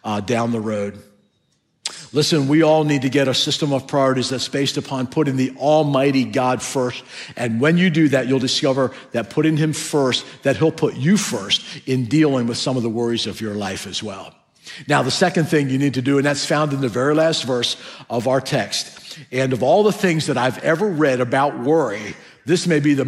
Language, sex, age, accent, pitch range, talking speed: English, male, 50-69, American, 125-155 Hz, 220 wpm